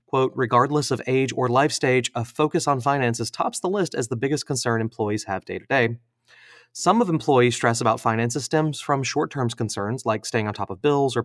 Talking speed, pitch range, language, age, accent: 215 wpm, 115-150 Hz, English, 30-49, American